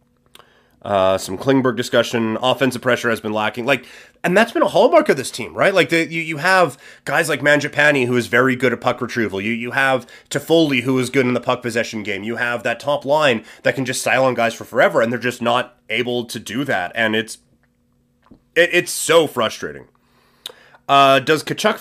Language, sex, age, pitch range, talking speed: English, male, 30-49, 120-150 Hz, 210 wpm